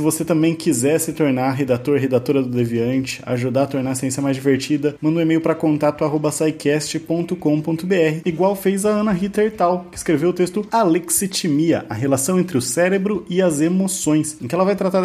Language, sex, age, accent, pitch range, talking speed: Portuguese, male, 20-39, Brazilian, 135-165 Hz, 180 wpm